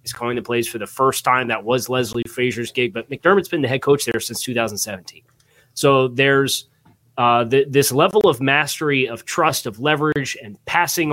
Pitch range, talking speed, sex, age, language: 115-140 Hz, 195 wpm, male, 30-49, English